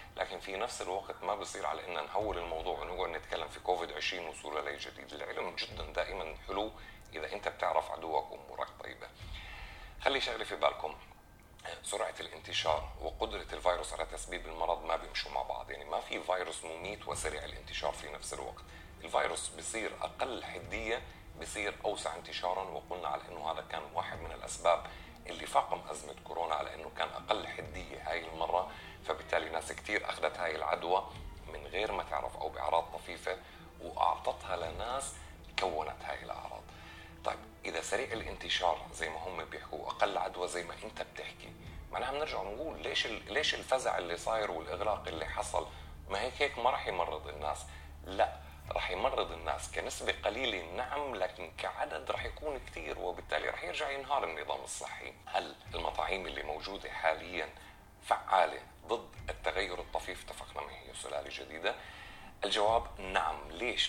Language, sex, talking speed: Arabic, male, 155 wpm